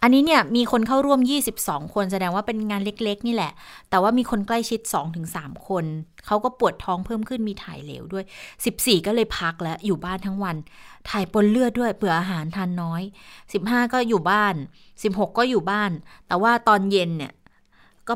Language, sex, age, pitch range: Thai, female, 20-39, 175-220 Hz